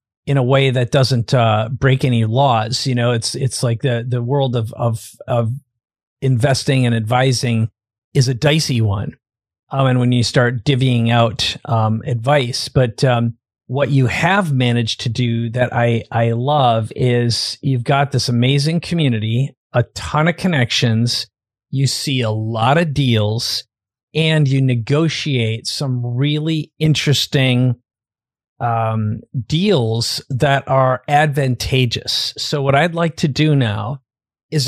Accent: American